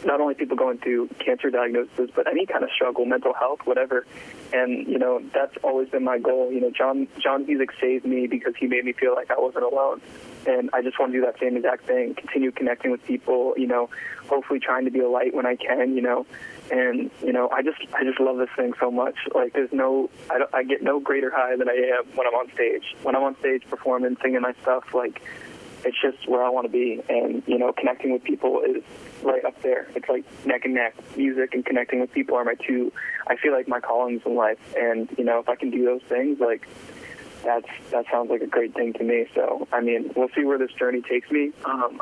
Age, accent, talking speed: 20-39, American, 245 wpm